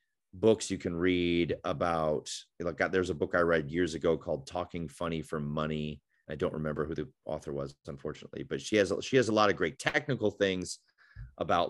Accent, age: American, 30-49